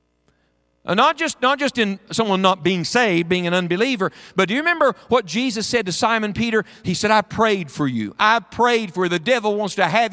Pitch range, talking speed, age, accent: 175-245 Hz, 220 wpm, 50-69, American